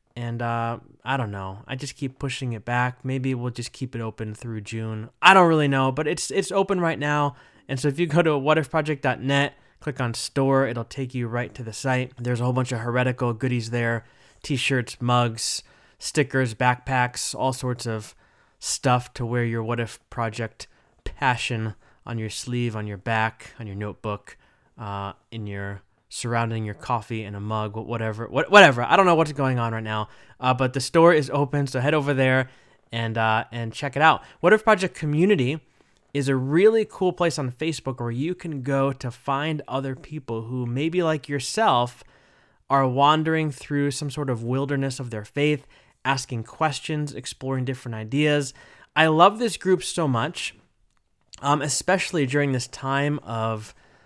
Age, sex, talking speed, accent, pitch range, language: 20-39, male, 180 wpm, American, 115-145 Hz, English